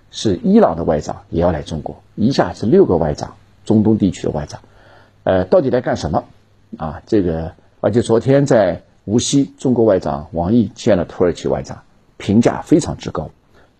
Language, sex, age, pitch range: Chinese, male, 50-69, 90-115 Hz